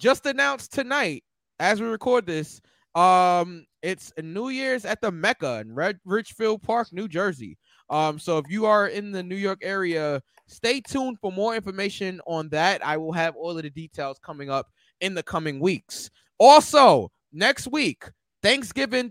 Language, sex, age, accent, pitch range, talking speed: English, male, 20-39, American, 160-215 Hz, 165 wpm